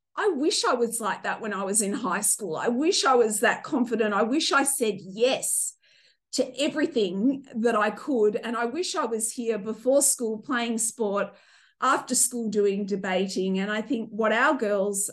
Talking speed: 190 wpm